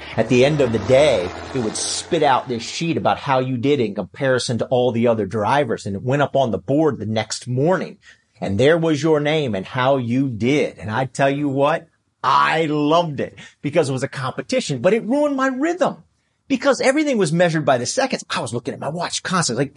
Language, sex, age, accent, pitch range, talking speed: English, male, 50-69, American, 100-155 Hz, 230 wpm